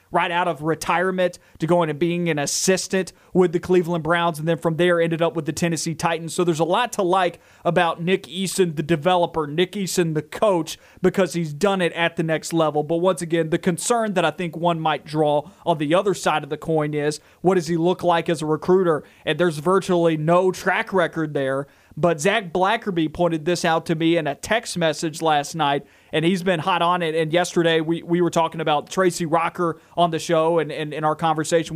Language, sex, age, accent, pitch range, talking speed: English, male, 30-49, American, 160-180 Hz, 225 wpm